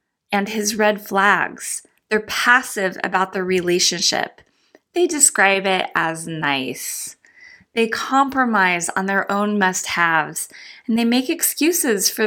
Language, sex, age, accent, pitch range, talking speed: English, female, 20-39, American, 190-260 Hz, 120 wpm